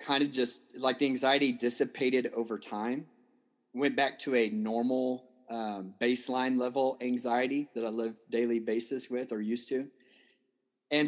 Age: 30-49